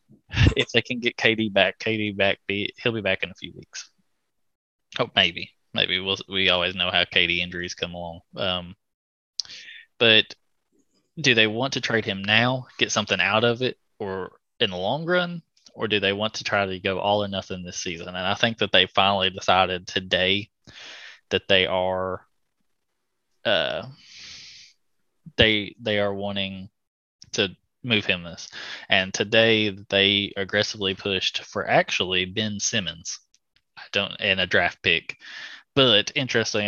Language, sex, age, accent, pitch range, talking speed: English, male, 20-39, American, 95-110 Hz, 160 wpm